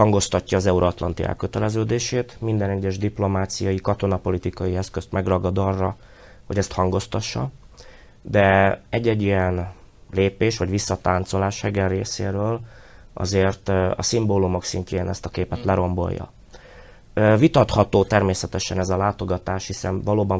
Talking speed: 110 wpm